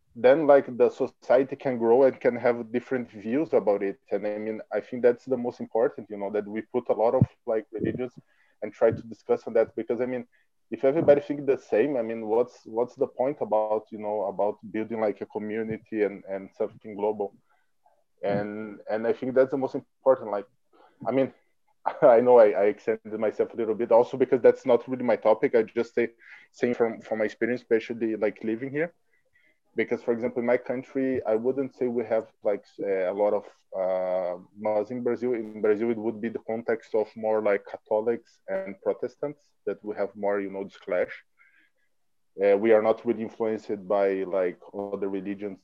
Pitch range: 100-125 Hz